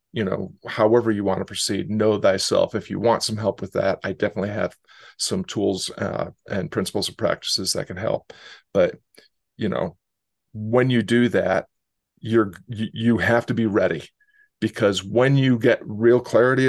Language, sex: English, male